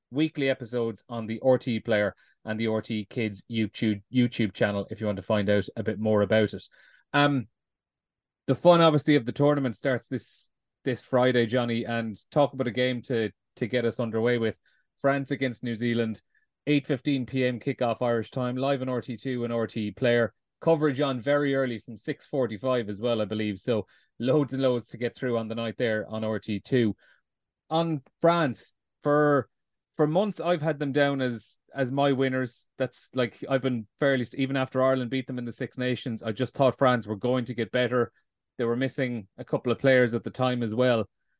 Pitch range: 115-140 Hz